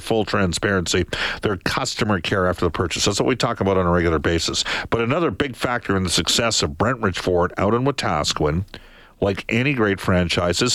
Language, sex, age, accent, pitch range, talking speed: English, male, 50-69, American, 90-125 Hz, 195 wpm